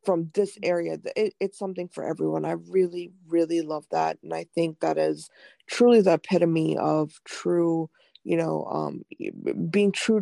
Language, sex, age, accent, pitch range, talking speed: English, female, 20-39, American, 165-195 Hz, 160 wpm